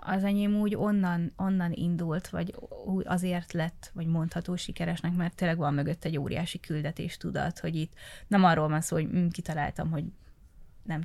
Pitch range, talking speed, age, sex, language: 160-185 Hz, 165 wpm, 20-39, female, Hungarian